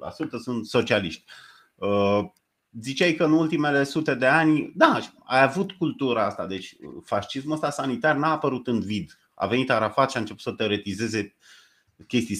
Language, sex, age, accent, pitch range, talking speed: Romanian, male, 30-49, native, 100-135 Hz, 155 wpm